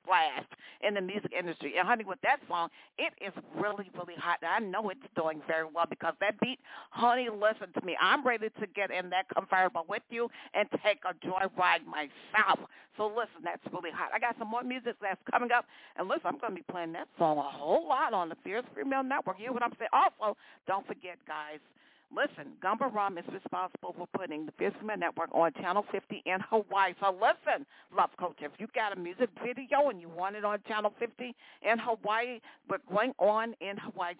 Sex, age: female, 50-69